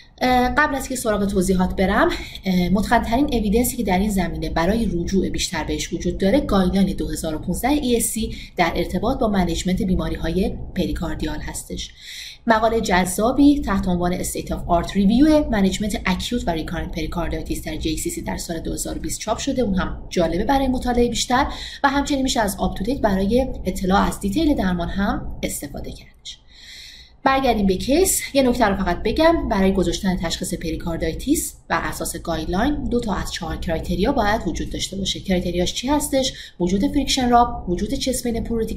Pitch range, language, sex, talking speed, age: 175-240 Hz, Persian, female, 155 wpm, 30-49